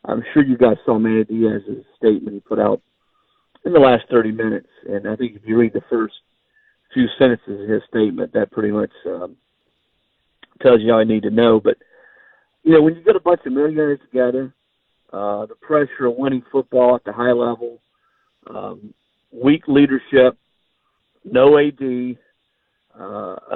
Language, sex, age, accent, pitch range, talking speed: English, male, 50-69, American, 115-135 Hz, 170 wpm